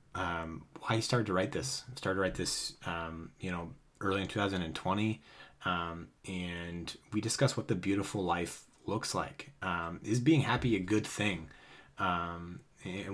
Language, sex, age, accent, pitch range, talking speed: English, male, 30-49, American, 90-115 Hz, 165 wpm